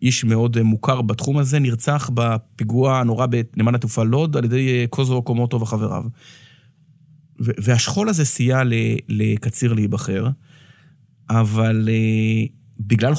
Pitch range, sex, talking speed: 115-145 Hz, male, 105 wpm